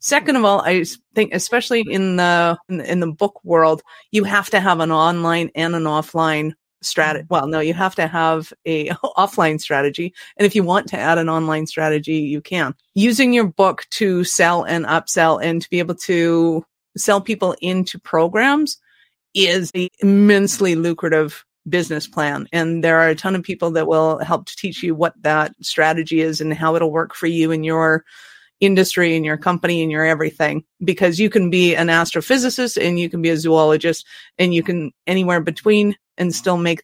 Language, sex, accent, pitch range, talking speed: English, female, American, 160-190 Hz, 190 wpm